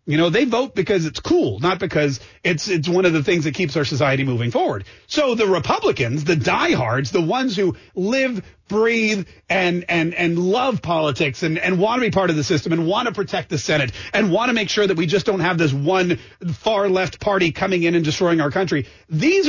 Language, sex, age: English, male, 40-59